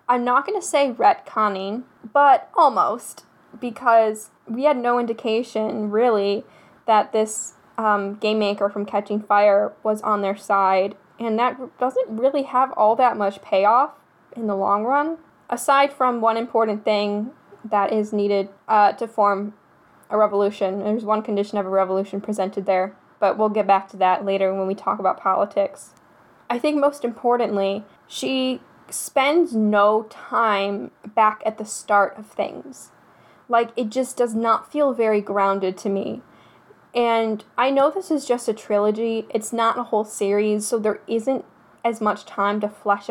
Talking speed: 165 wpm